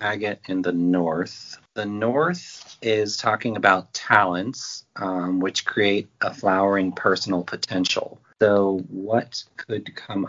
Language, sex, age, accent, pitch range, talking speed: English, male, 40-59, American, 90-105 Hz, 120 wpm